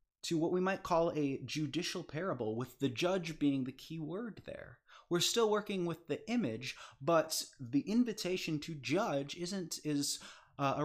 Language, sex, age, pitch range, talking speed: English, male, 20-39, 120-170 Hz, 165 wpm